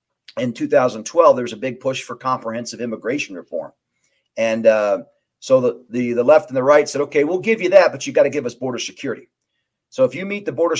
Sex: male